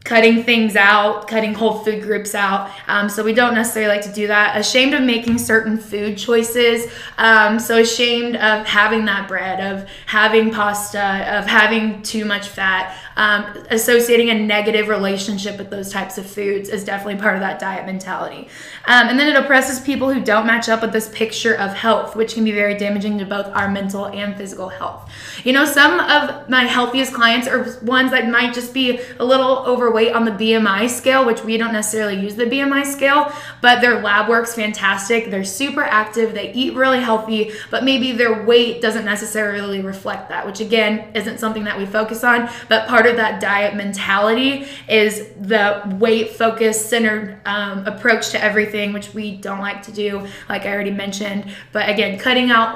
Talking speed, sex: 190 wpm, female